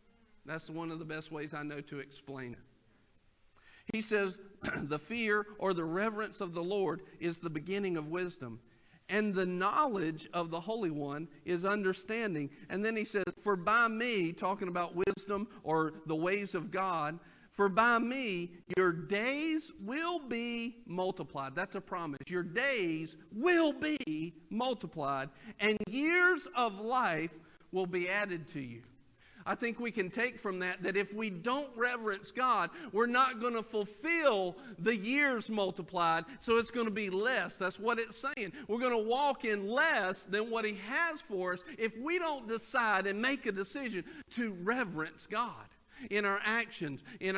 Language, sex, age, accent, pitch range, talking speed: English, male, 50-69, American, 175-230 Hz, 170 wpm